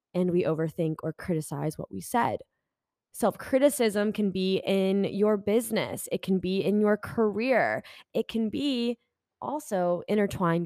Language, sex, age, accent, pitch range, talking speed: English, female, 10-29, American, 175-225 Hz, 140 wpm